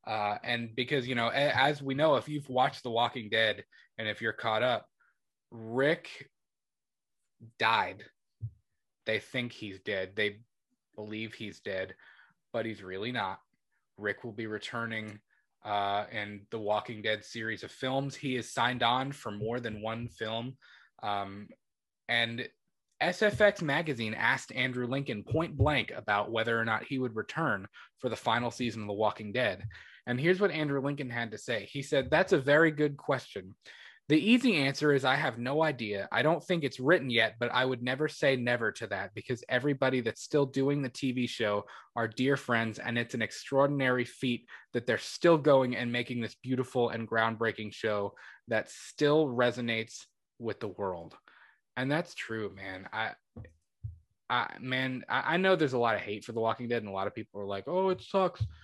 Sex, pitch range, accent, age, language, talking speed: male, 110-135 Hz, American, 20-39, English, 180 wpm